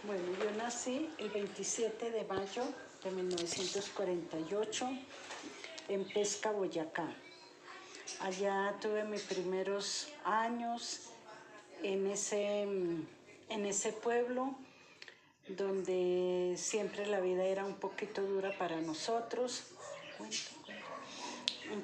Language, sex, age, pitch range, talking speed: Spanish, female, 50-69, 185-220 Hz, 90 wpm